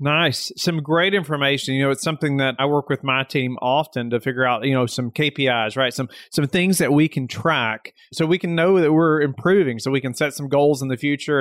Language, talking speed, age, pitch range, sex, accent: English, 240 wpm, 30-49, 130-160 Hz, male, American